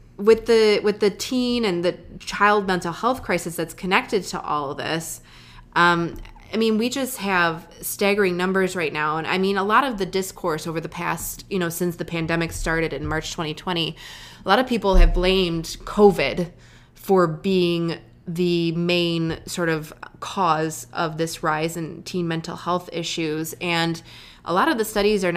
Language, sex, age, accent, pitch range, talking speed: English, female, 20-39, American, 165-195 Hz, 180 wpm